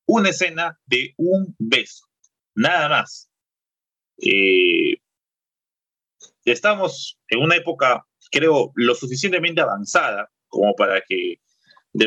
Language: Spanish